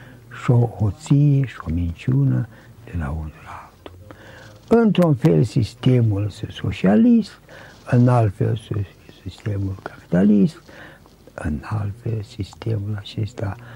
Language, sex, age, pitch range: Romanian, male, 60-79, 95-130 Hz